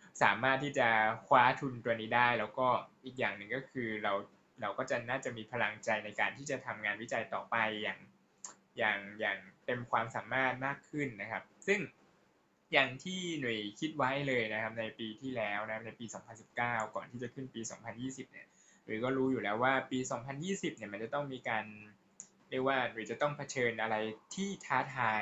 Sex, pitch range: male, 110-140 Hz